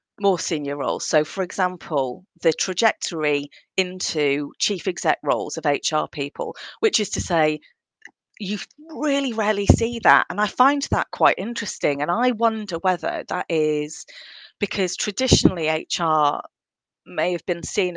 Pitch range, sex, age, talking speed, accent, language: 160-215 Hz, female, 30-49, 145 wpm, British, English